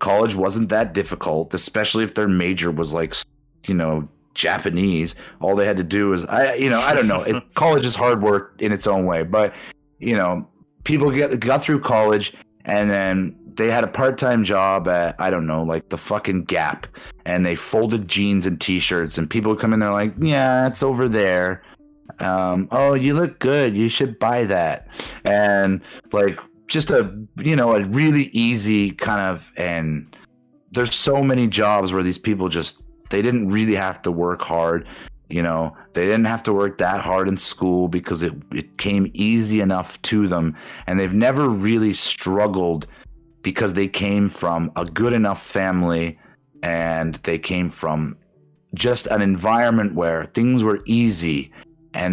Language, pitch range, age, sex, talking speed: English, 90-115 Hz, 30-49, male, 180 wpm